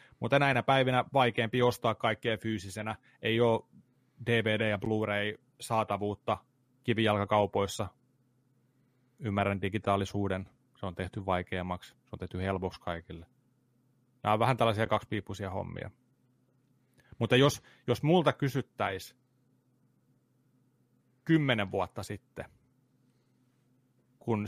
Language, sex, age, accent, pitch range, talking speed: Finnish, male, 30-49, native, 100-125 Hz, 100 wpm